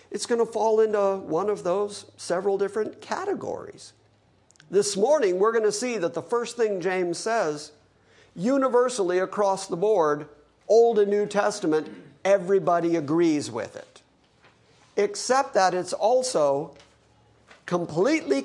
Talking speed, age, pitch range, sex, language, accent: 130 wpm, 50-69, 155-210 Hz, male, English, American